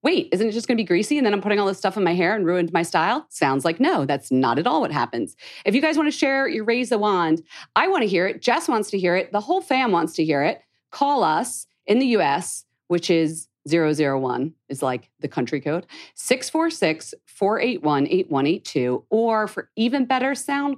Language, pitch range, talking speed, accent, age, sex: English, 150-220 Hz, 220 wpm, American, 40-59, female